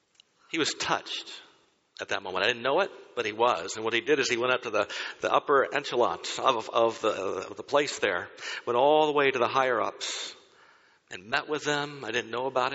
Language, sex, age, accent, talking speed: English, male, 60-79, American, 225 wpm